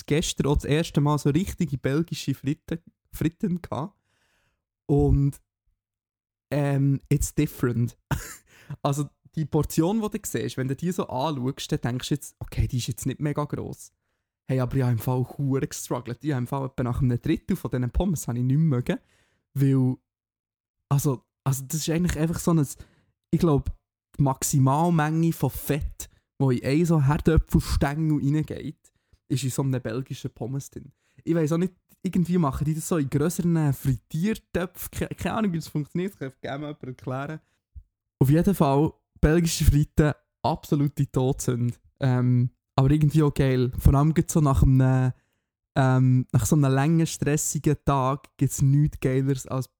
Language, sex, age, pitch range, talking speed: German, male, 20-39, 125-155 Hz, 165 wpm